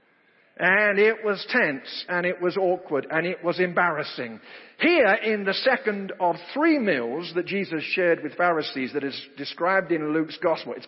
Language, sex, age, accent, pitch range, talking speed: English, male, 50-69, British, 180-245 Hz, 170 wpm